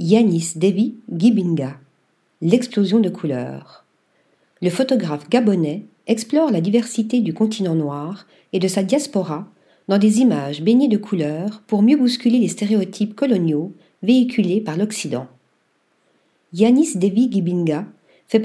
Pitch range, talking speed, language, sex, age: 170-230 Hz, 125 wpm, French, female, 50-69